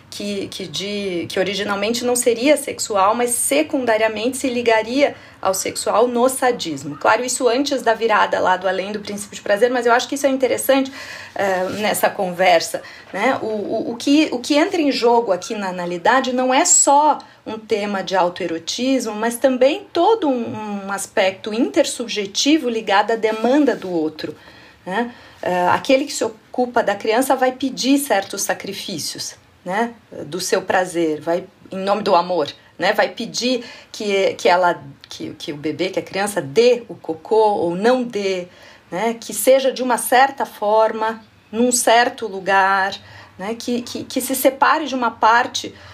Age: 40-59